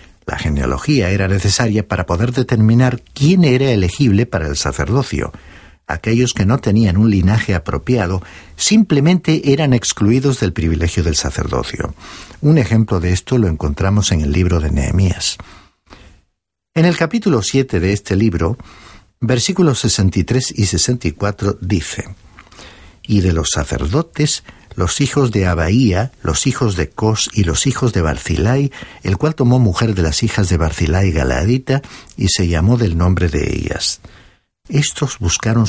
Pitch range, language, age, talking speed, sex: 90-125 Hz, Spanish, 60-79, 145 wpm, male